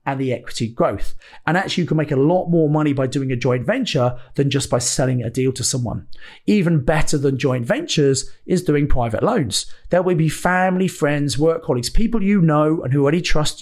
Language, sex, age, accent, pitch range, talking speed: English, male, 30-49, British, 130-165 Hz, 215 wpm